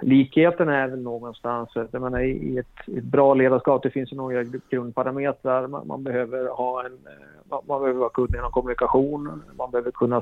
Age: 30-49